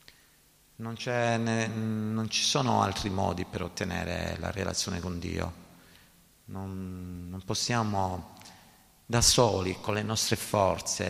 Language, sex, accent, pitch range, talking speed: Italian, male, native, 95-115 Hz, 120 wpm